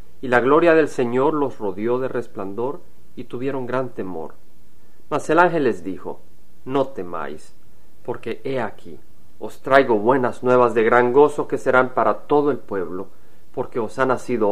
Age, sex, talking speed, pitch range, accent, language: 40-59, male, 165 wpm, 110-140 Hz, Mexican, Spanish